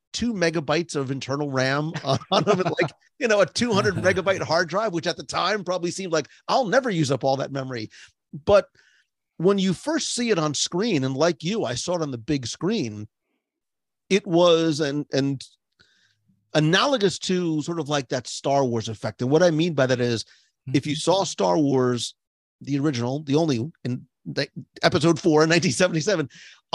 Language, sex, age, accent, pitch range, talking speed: English, male, 40-59, American, 140-190 Hz, 180 wpm